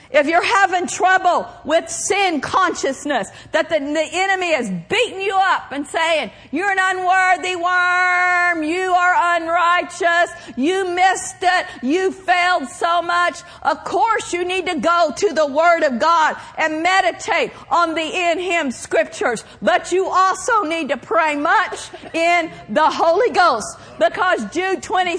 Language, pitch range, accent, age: English, 320-375 Hz, American, 50-69